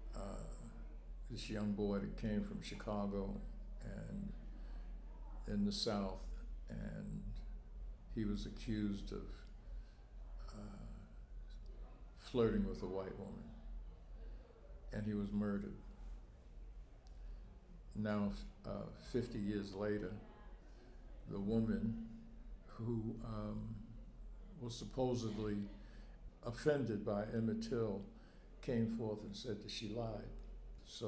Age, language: 60-79, English